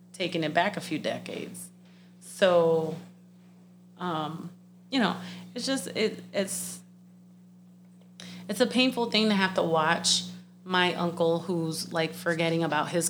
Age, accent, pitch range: 30-49, American, 150-180 Hz